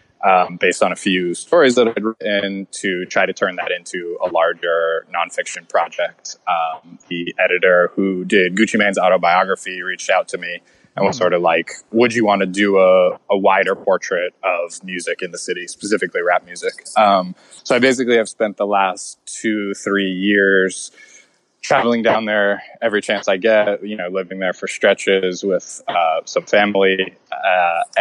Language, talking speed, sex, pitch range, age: English, 175 wpm, male, 90-110 Hz, 20-39